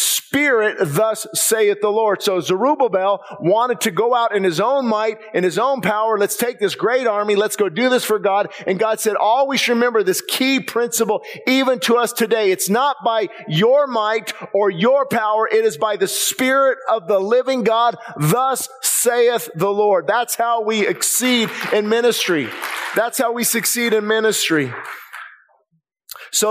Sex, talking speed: male, 175 wpm